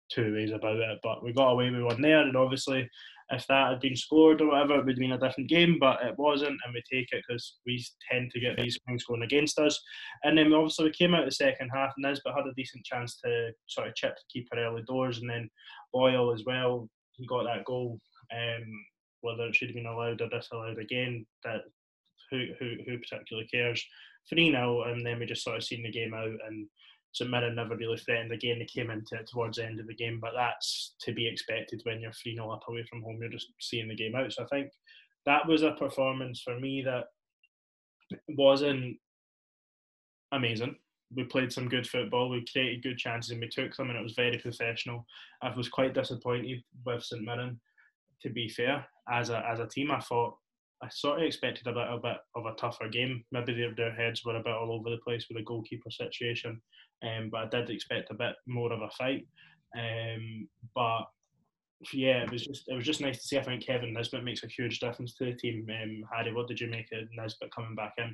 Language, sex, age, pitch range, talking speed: English, male, 20-39, 115-130 Hz, 230 wpm